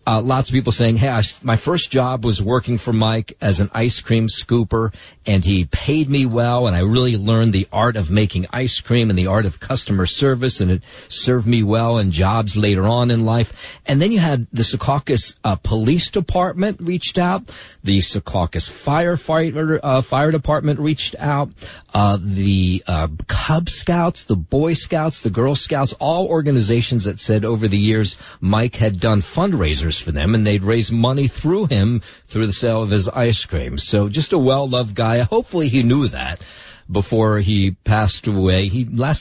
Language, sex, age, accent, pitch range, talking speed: English, male, 40-59, American, 95-130 Hz, 185 wpm